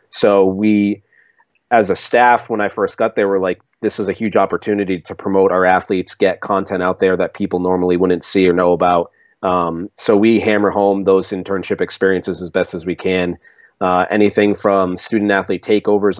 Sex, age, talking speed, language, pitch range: male, 30-49, 190 wpm, English, 90-105 Hz